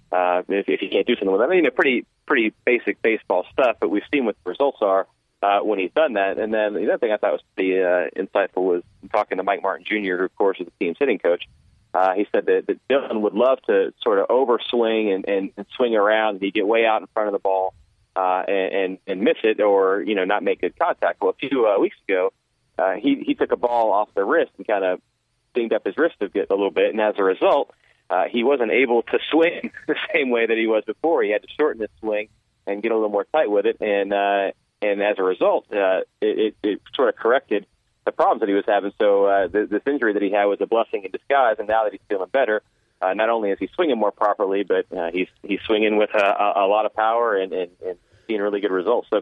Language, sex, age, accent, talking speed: English, male, 30-49, American, 265 wpm